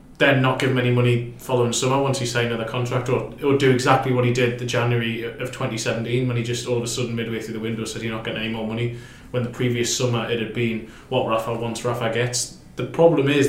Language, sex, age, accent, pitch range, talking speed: English, male, 20-39, British, 115-125 Hz, 255 wpm